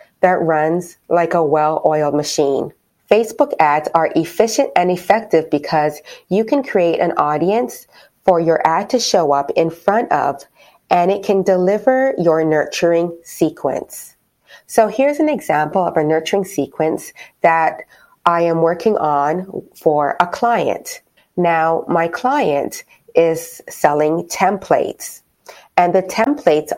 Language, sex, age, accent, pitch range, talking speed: English, female, 30-49, American, 155-205 Hz, 130 wpm